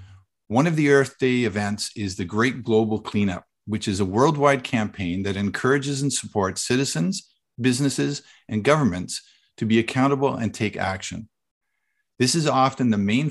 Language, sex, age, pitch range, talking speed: English, male, 50-69, 105-135 Hz, 160 wpm